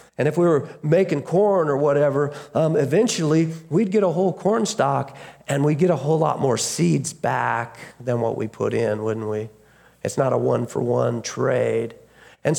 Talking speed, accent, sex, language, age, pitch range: 185 wpm, American, male, English, 50-69, 145-190 Hz